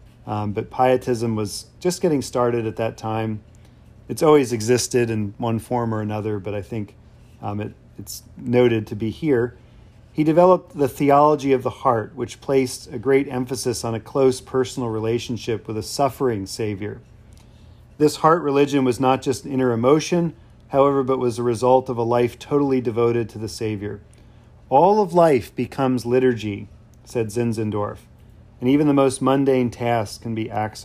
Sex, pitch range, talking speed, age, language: male, 110-130 Hz, 165 wpm, 40-59, English